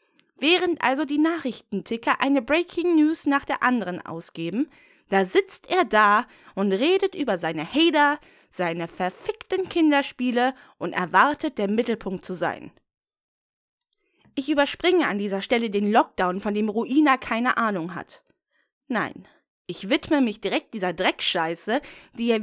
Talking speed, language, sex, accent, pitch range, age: 135 wpm, German, female, German, 210-325 Hz, 20-39